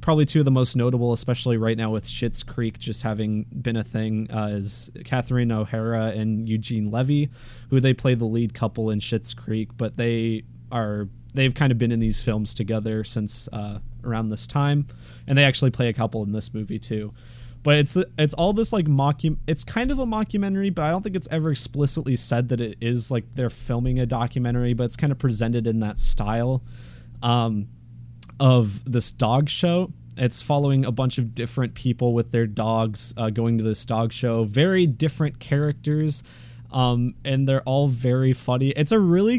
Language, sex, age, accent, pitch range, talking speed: English, male, 20-39, American, 115-135 Hz, 200 wpm